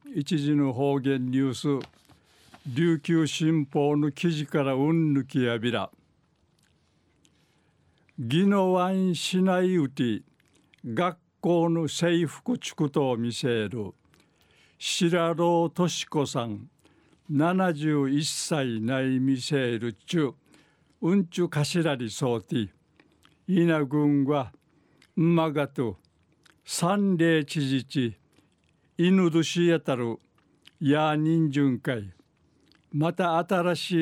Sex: male